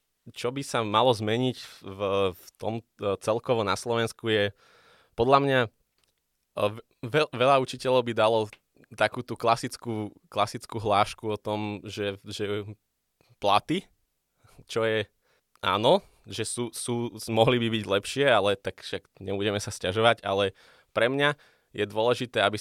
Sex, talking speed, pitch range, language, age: male, 135 wpm, 100-115 Hz, Slovak, 20-39